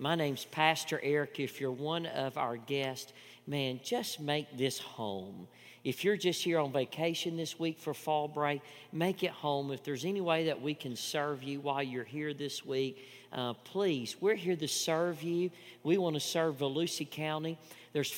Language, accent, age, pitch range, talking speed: English, American, 50-69, 140-190 Hz, 190 wpm